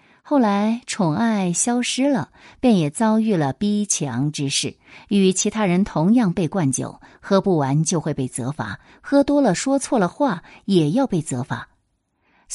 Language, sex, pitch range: Chinese, female, 140-205 Hz